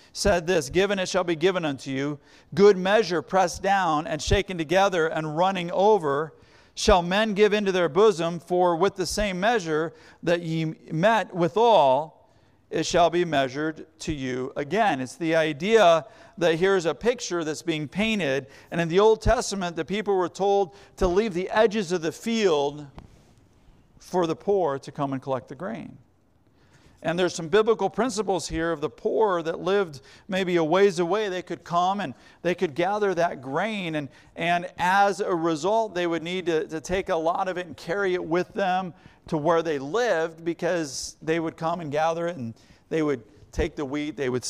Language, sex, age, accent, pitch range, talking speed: English, male, 50-69, American, 155-190 Hz, 185 wpm